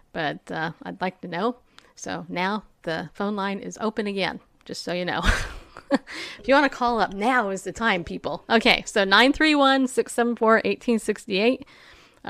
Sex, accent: female, American